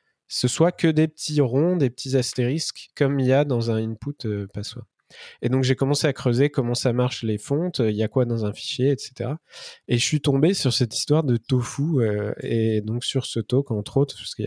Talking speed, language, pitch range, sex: 230 wpm, French, 115-145 Hz, male